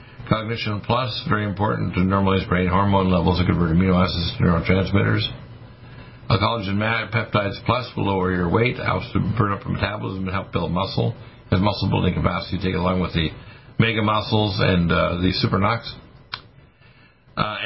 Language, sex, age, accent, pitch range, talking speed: English, male, 60-79, American, 90-110 Hz, 170 wpm